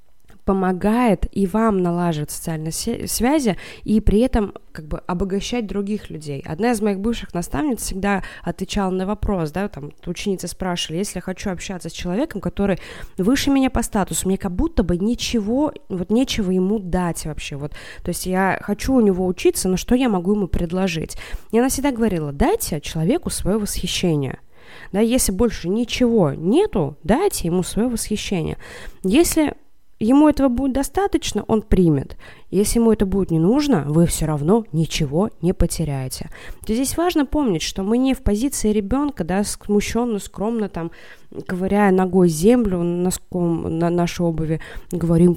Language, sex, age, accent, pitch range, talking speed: Russian, female, 20-39, native, 170-235 Hz, 155 wpm